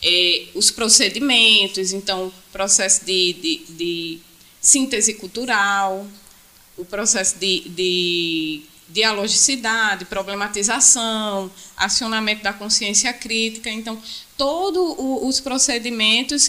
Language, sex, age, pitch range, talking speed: Portuguese, female, 20-39, 195-250 Hz, 85 wpm